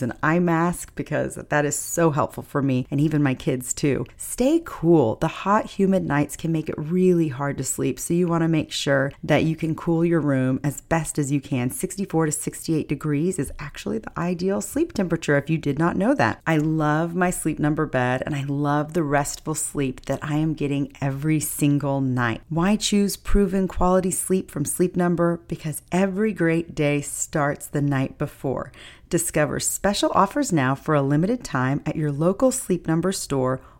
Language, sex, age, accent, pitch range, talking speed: English, female, 40-59, American, 145-180 Hz, 195 wpm